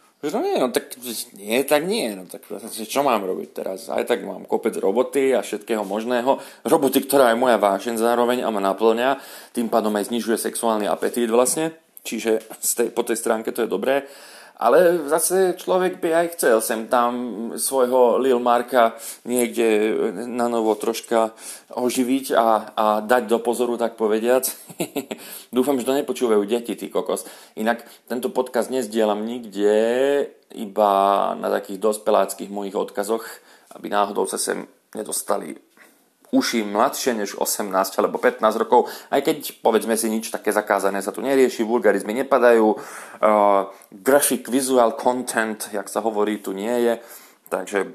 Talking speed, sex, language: 155 wpm, male, Slovak